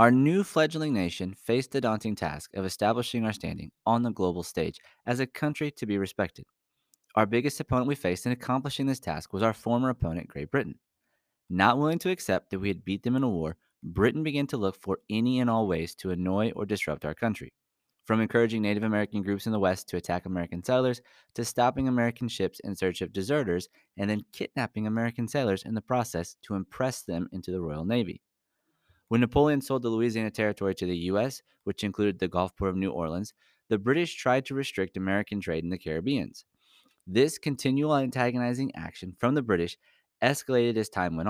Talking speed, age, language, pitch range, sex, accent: 200 wpm, 30-49, English, 95-125 Hz, male, American